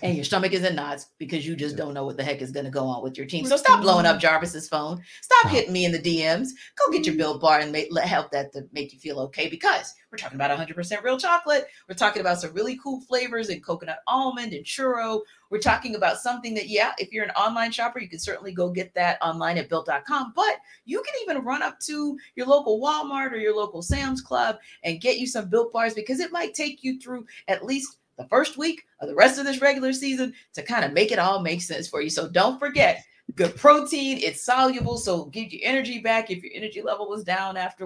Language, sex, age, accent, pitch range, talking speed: English, female, 40-59, American, 160-260 Hz, 245 wpm